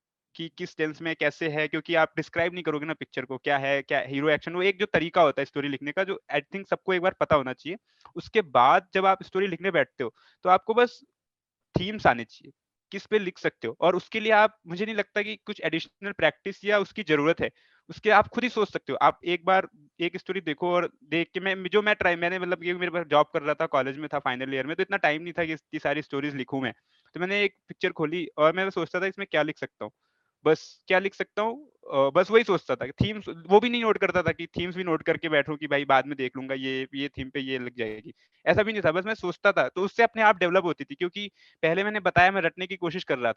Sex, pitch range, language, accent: male, 150-190 Hz, Hindi, native